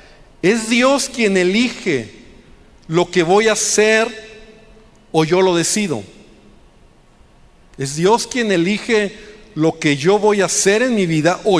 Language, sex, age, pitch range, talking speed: Spanish, male, 50-69, 160-210 Hz, 140 wpm